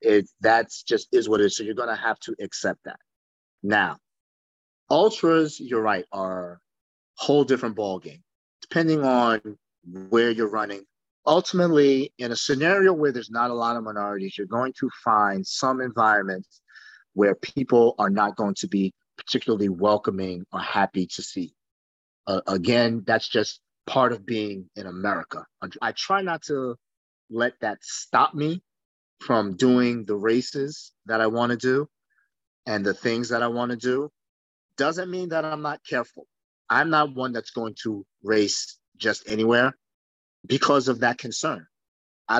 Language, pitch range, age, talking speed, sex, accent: English, 105-135 Hz, 30-49, 160 wpm, male, American